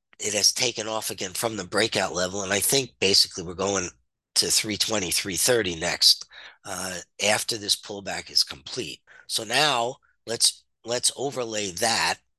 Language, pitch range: English, 95-110 Hz